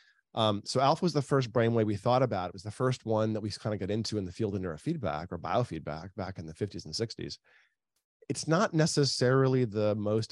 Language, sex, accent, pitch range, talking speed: English, male, American, 90-110 Hz, 225 wpm